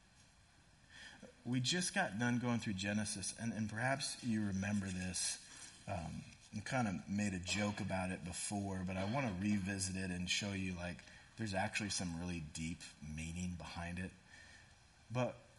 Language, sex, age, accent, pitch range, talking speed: English, male, 40-59, American, 95-135 Hz, 160 wpm